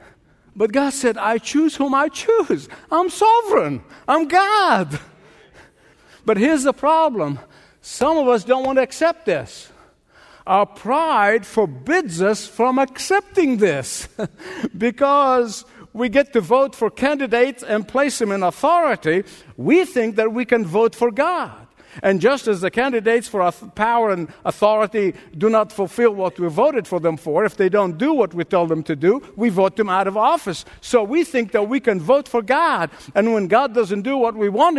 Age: 60-79